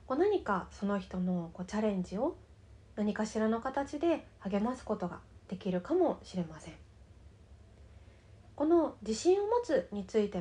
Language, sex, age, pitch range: Japanese, female, 20-39, 180-255 Hz